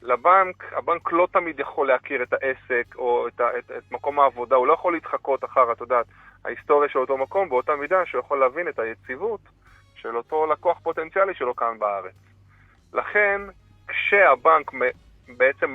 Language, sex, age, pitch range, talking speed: Hebrew, male, 30-49, 115-180 Hz, 165 wpm